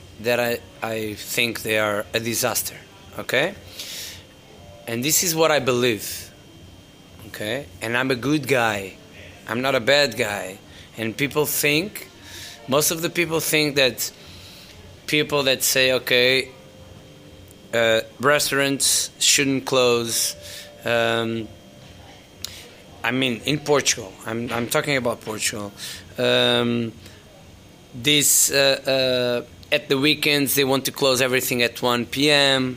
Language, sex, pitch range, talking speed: English, male, 115-145 Hz, 125 wpm